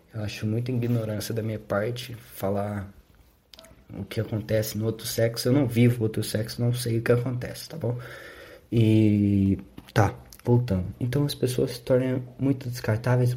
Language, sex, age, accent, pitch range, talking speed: Portuguese, male, 20-39, Brazilian, 100-120 Hz, 160 wpm